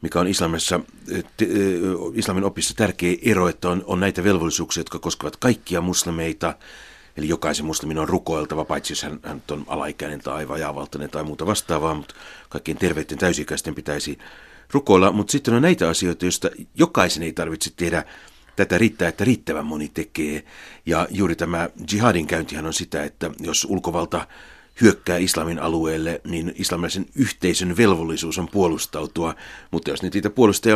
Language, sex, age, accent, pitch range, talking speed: Finnish, male, 60-79, native, 80-100 Hz, 155 wpm